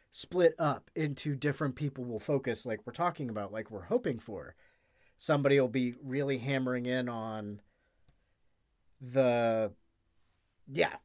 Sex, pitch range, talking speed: male, 115-145 Hz, 130 wpm